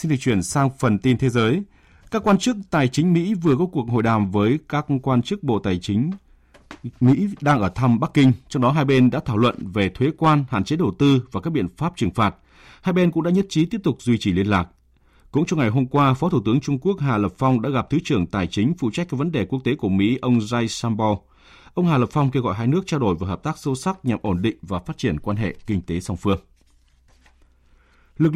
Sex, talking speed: male, 260 wpm